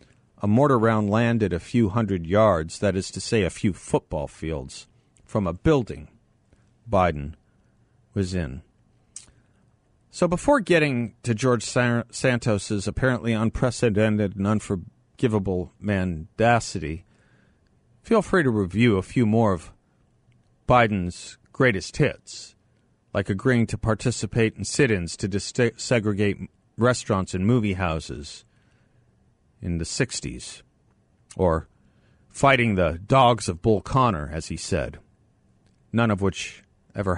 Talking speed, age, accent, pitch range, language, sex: 120 wpm, 50-69, American, 95-120 Hz, English, male